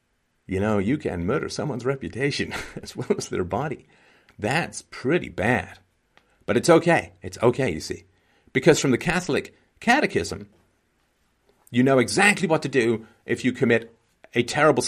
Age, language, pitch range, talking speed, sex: 50-69, English, 95-140 Hz, 155 wpm, male